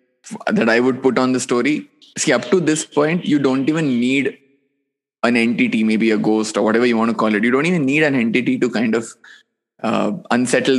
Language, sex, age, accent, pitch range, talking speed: English, male, 20-39, Indian, 110-130 Hz, 215 wpm